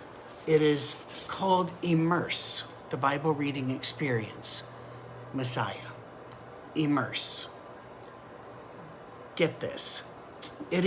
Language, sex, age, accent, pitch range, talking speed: English, male, 50-69, American, 130-165 Hz, 70 wpm